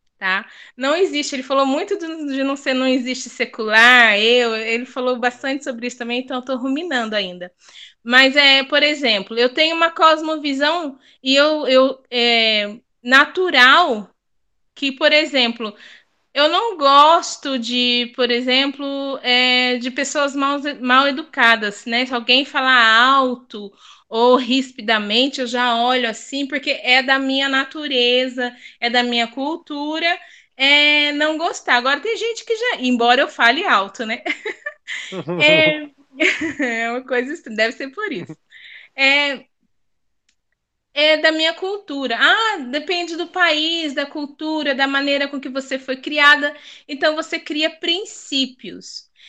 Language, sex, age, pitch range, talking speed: Portuguese, female, 20-39, 245-300 Hz, 140 wpm